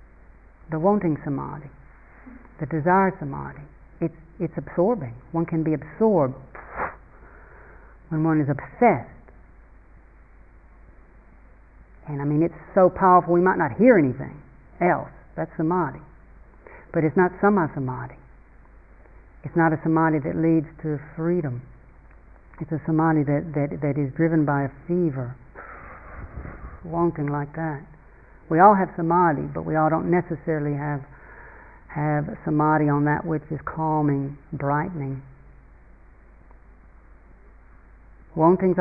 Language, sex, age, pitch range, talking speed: English, female, 60-79, 135-175 Hz, 120 wpm